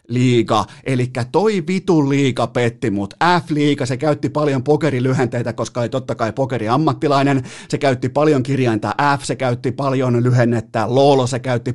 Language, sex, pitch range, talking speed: Finnish, male, 125-150 Hz, 150 wpm